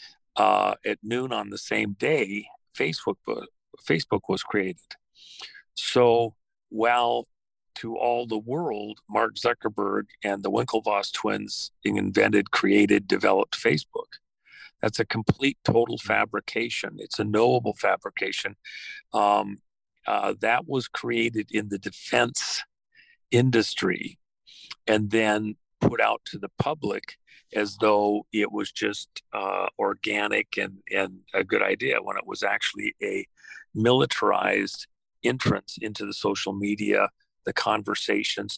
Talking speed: 125 wpm